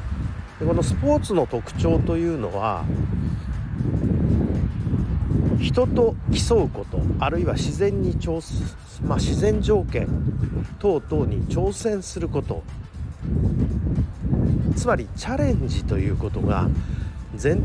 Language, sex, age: Japanese, male, 50-69